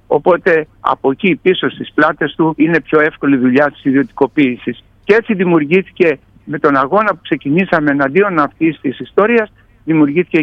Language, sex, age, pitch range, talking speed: Greek, male, 60-79, 140-190 Hz, 150 wpm